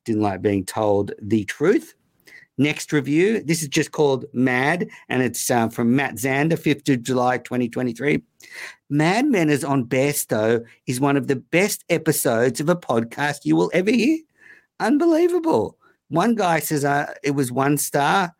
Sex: male